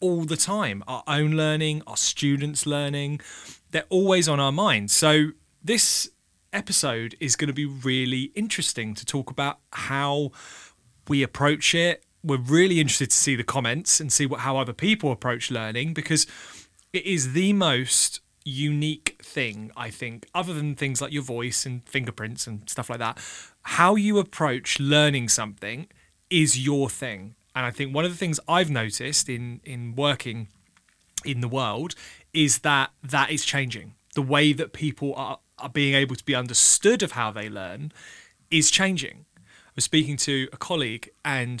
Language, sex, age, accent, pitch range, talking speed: English, male, 30-49, British, 125-155 Hz, 170 wpm